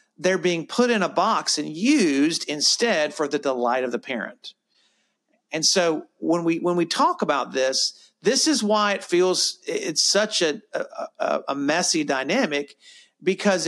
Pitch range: 140-190 Hz